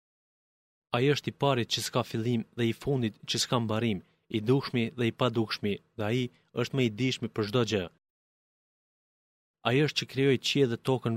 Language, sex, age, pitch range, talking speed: Greek, male, 30-49, 110-130 Hz, 185 wpm